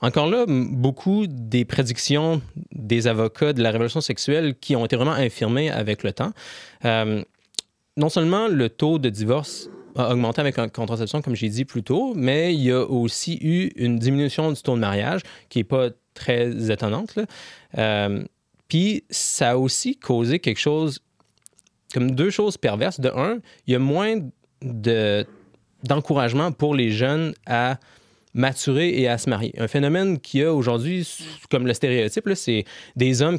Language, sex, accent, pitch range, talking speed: French, male, Canadian, 115-150 Hz, 170 wpm